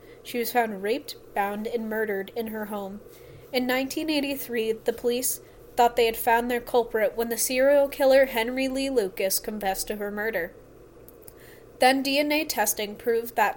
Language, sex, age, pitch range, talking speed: English, female, 20-39, 215-260 Hz, 160 wpm